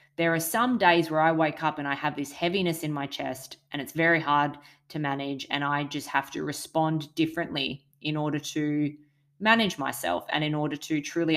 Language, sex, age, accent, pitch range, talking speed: English, female, 20-39, Australian, 145-165 Hz, 205 wpm